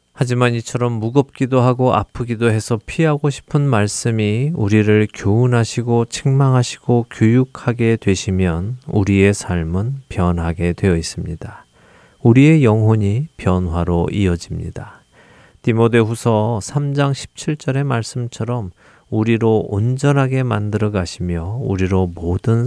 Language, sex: Korean, male